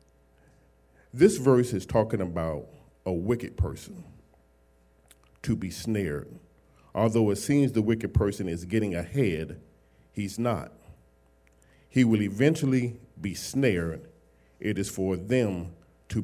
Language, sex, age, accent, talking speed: English, male, 40-59, American, 120 wpm